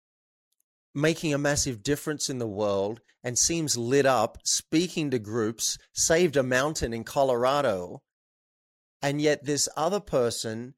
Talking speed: 135 wpm